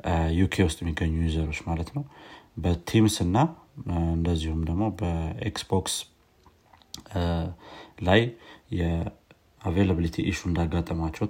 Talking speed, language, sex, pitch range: 80 wpm, Amharic, male, 85-100 Hz